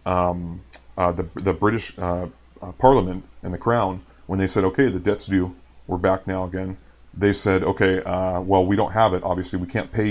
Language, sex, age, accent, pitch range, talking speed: English, male, 30-49, American, 90-100 Hz, 210 wpm